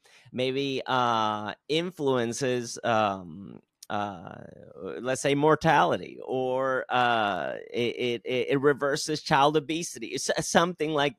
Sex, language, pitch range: male, English, 110-150 Hz